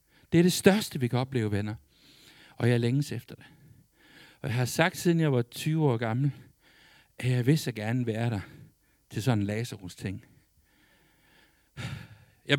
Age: 60-79